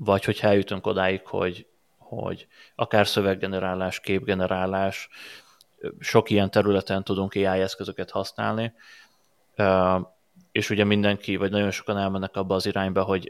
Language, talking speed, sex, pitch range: Hungarian, 120 wpm, male, 95-105 Hz